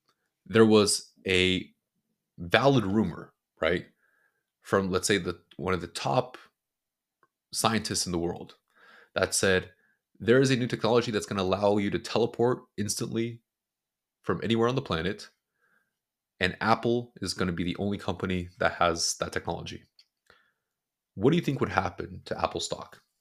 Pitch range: 90-120 Hz